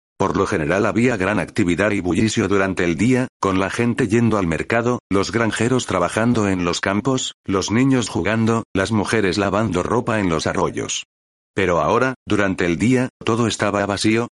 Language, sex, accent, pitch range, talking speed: Spanish, male, Spanish, 90-115 Hz, 170 wpm